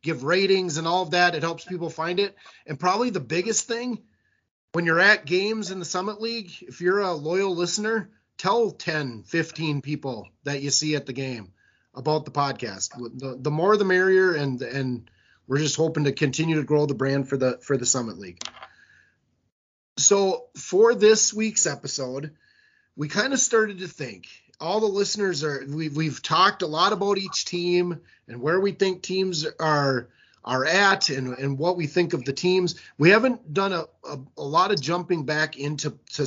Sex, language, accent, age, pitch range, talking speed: male, English, American, 30-49, 140-185 Hz, 190 wpm